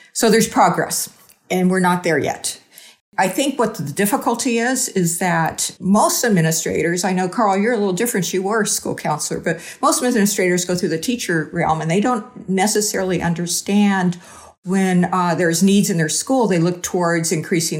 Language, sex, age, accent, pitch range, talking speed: English, female, 50-69, American, 170-215 Hz, 180 wpm